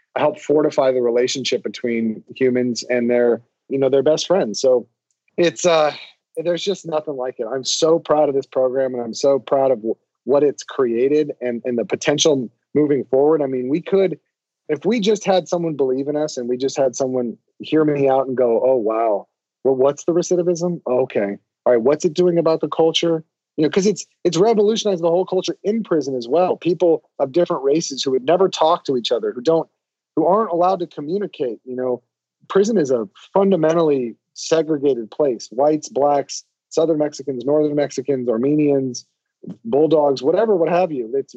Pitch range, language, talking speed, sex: 130-175 Hz, English, 190 wpm, male